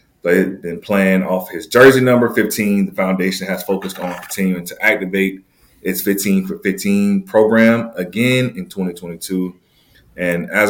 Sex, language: male, English